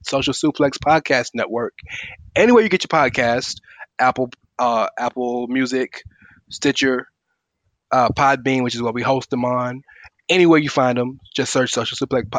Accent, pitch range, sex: American, 120-135 Hz, male